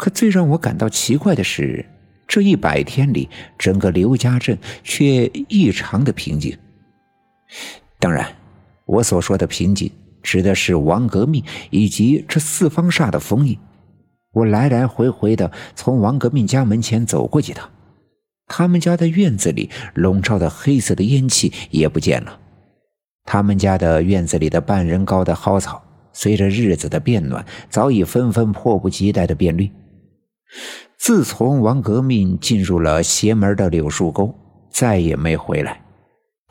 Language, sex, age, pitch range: Chinese, male, 50-69, 90-130 Hz